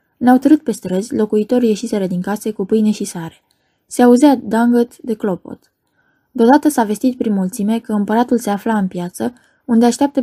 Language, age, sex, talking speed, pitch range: Romanian, 20-39, female, 175 wpm, 200-245 Hz